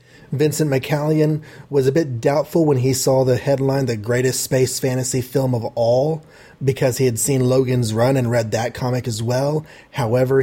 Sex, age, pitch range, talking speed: male, 30-49, 120-145 Hz, 180 wpm